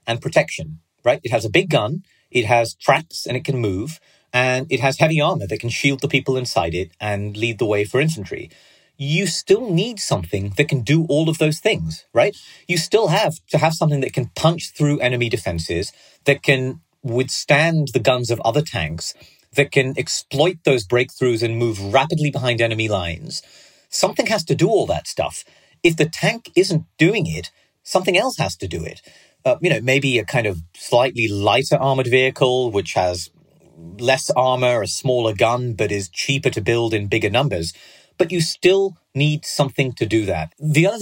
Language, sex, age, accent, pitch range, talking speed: English, male, 40-59, British, 115-155 Hz, 190 wpm